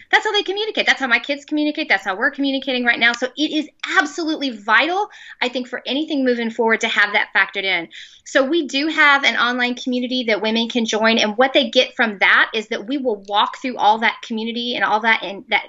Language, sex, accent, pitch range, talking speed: English, female, American, 215-285 Hz, 235 wpm